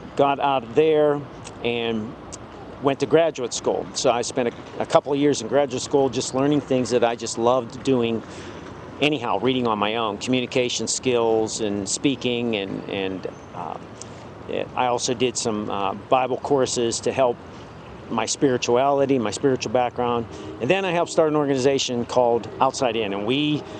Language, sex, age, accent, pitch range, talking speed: English, male, 50-69, American, 115-145 Hz, 165 wpm